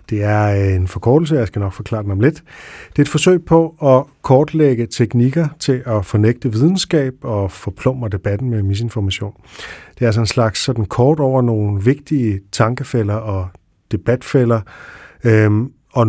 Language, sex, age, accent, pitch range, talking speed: Danish, male, 40-59, native, 100-130 Hz, 150 wpm